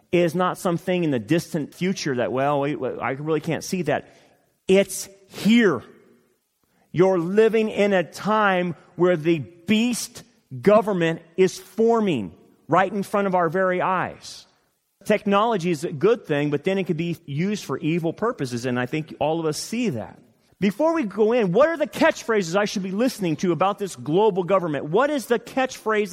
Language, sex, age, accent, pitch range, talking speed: English, male, 30-49, American, 170-225 Hz, 175 wpm